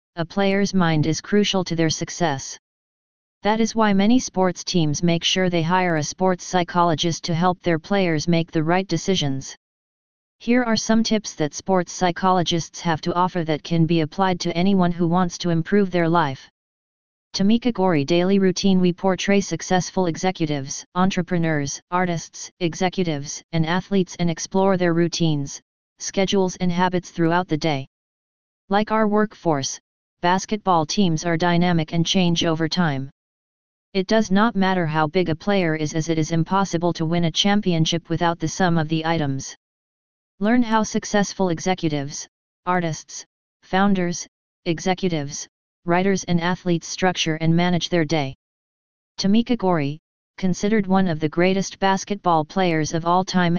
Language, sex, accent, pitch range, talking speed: English, female, American, 165-190 Hz, 150 wpm